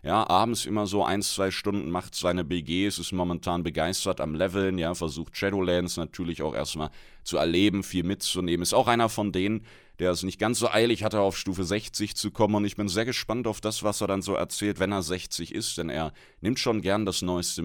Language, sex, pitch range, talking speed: German, male, 80-105 Hz, 220 wpm